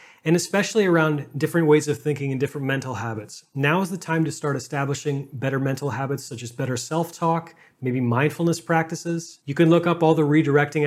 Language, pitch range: English, 135-165 Hz